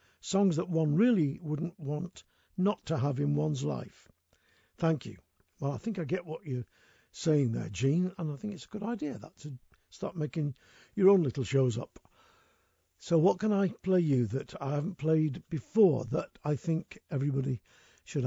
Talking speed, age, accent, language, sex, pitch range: 185 wpm, 60-79, British, English, male, 135-180 Hz